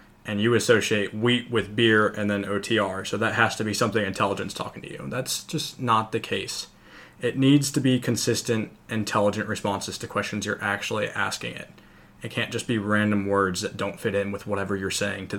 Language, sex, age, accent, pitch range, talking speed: English, male, 20-39, American, 105-120 Hz, 205 wpm